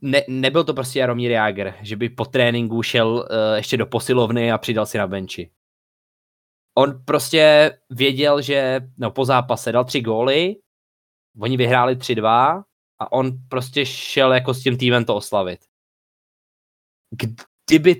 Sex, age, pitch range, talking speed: male, 20-39, 110-140 Hz, 145 wpm